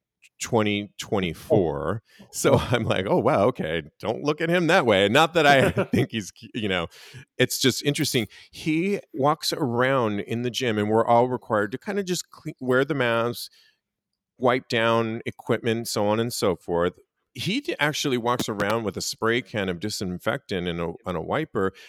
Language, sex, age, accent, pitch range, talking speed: English, male, 40-59, American, 95-140 Hz, 165 wpm